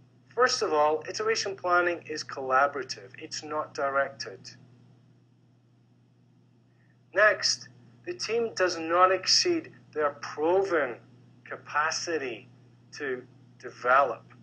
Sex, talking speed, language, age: male, 85 wpm, English, 40-59